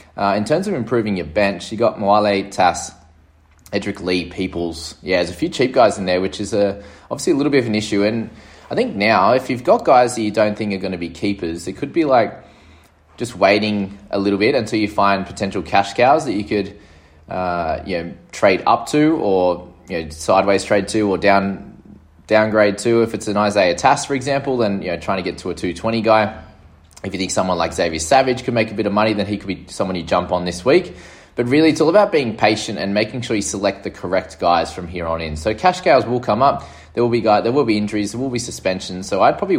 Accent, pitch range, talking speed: Australian, 90-110 Hz, 250 wpm